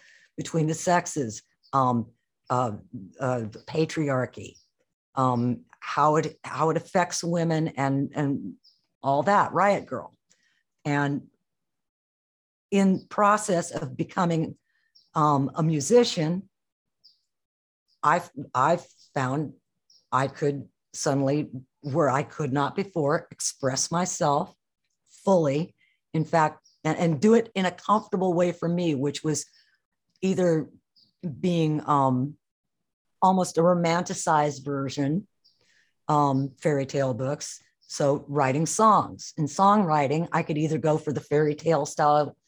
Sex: female